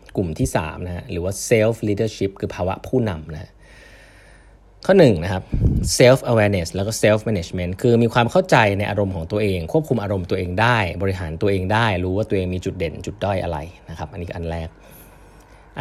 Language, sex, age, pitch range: Thai, male, 20-39, 90-115 Hz